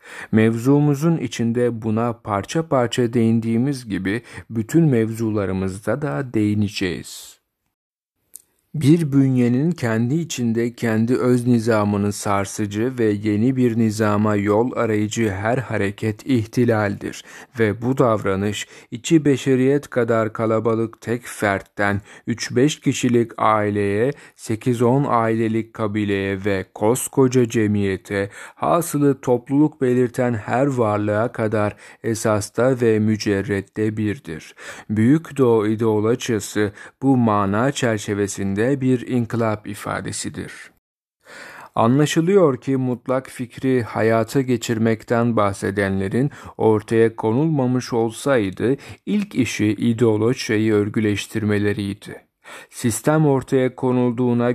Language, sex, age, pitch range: Turkish, male, 40-59, 105-130 Hz